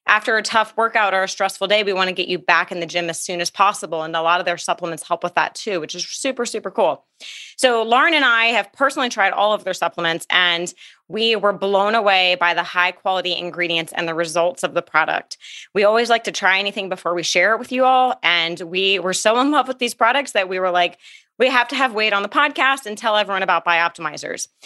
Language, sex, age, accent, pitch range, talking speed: English, female, 30-49, American, 180-225 Hz, 250 wpm